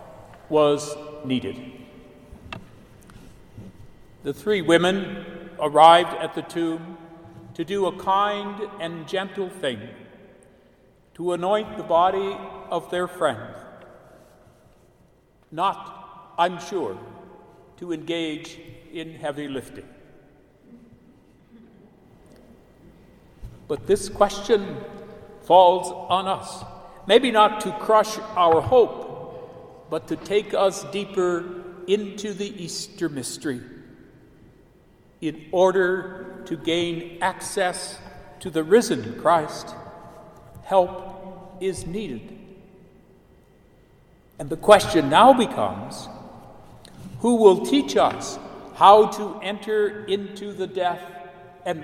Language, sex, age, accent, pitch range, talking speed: English, male, 60-79, American, 165-200 Hz, 95 wpm